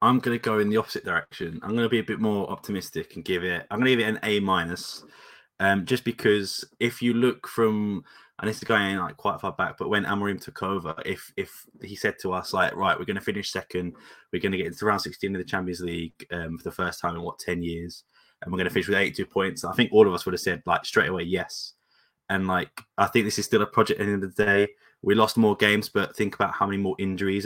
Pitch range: 95-110 Hz